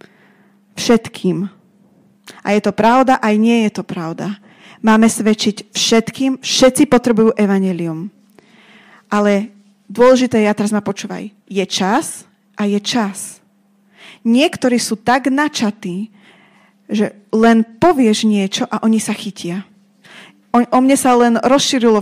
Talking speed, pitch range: 120 wpm, 200-230 Hz